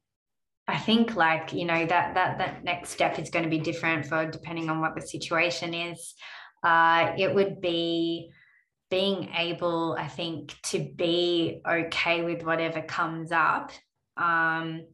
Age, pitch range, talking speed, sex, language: 20-39, 160-170 Hz, 155 wpm, female, English